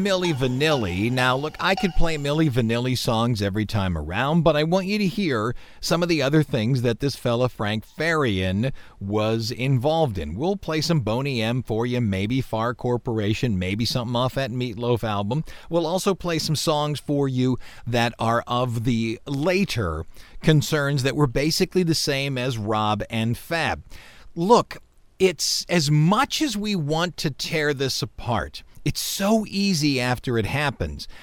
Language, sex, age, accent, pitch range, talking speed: English, male, 40-59, American, 115-165 Hz, 165 wpm